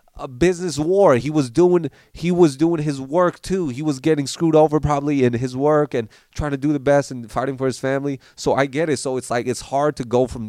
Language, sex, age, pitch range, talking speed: English, male, 30-49, 105-140 Hz, 250 wpm